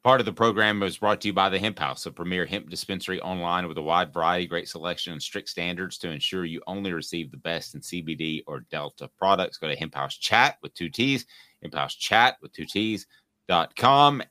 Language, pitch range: English, 85-105 Hz